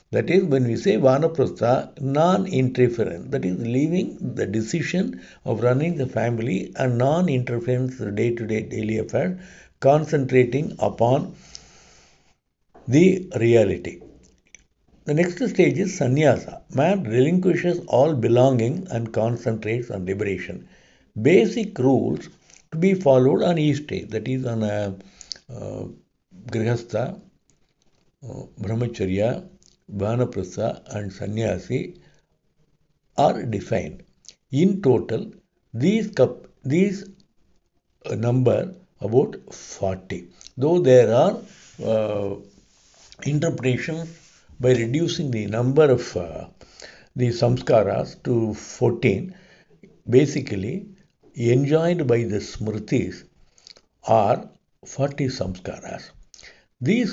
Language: English